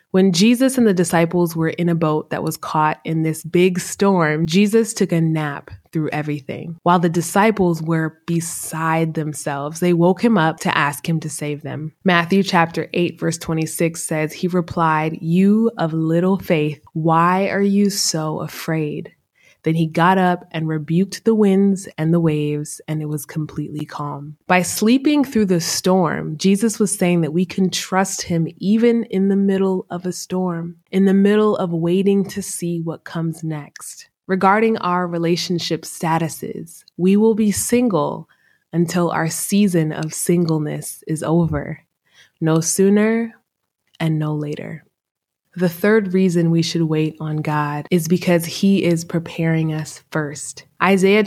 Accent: American